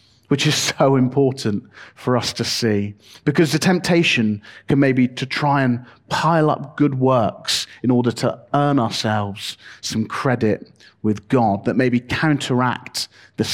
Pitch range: 110-140 Hz